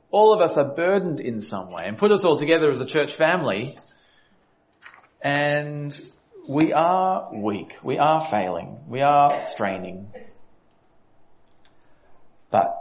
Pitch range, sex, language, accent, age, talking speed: 135-220 Hz, male, English, Australian, 40-59, 130 wpm